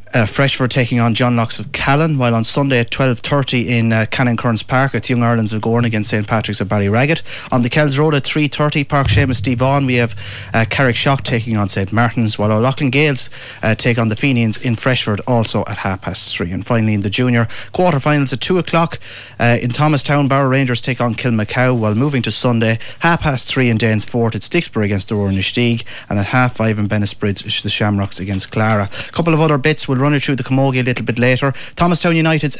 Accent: Irish